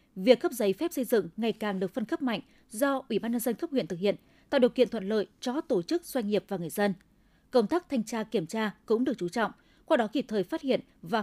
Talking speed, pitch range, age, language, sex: 275 wpm, 200-265 Hz, 20-39, Vietnamese, female